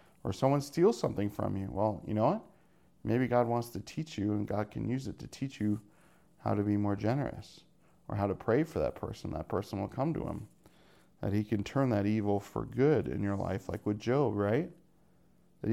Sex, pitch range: male, 100-125 Hz